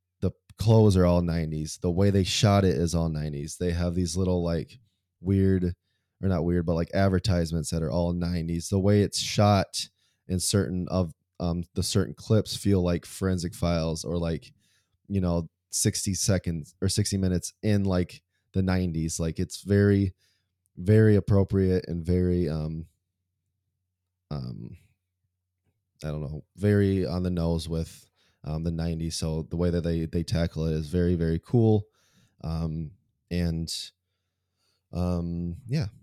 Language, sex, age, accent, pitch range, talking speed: English, male, 20-39, American, 85-95 Hz, 155 wpm